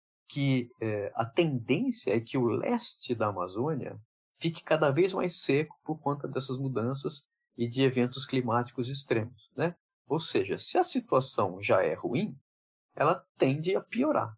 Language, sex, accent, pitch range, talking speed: Portuguese, male, Brazilian, 125-185 Hz, 155 wpm